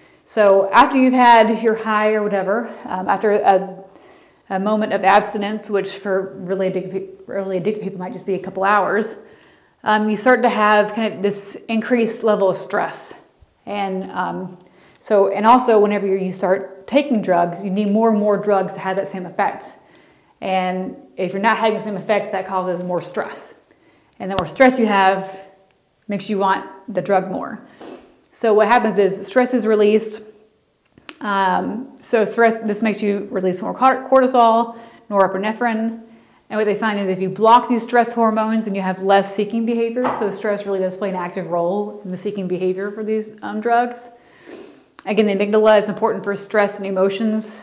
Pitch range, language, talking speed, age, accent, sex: 190-220 Hz, English, 180 wpm, 30-49, American, female